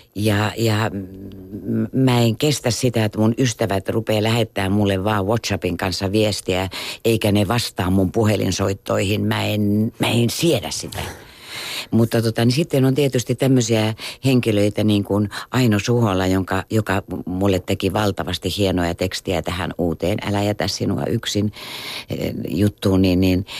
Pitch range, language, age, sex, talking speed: 95-115 Hz, Finnish, 60-79, female, 125 wpm